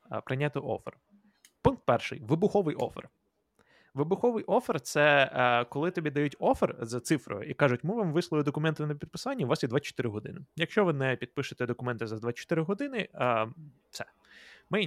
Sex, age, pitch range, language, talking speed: male, 20-39, 120-165 Hz, Ukrainian, 155 wpm